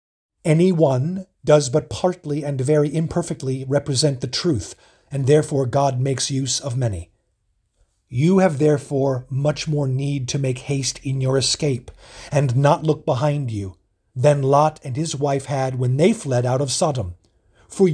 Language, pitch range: English, 125-155 Hz